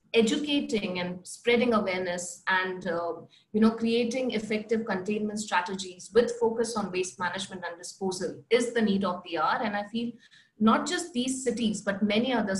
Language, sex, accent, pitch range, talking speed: English, female, Indian, 180-230 Hz, 165 wpm